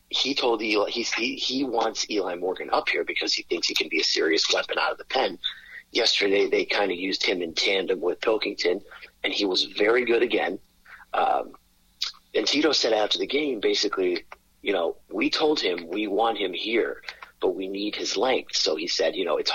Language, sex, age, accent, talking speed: English, male, 40-59, American, 210 wpm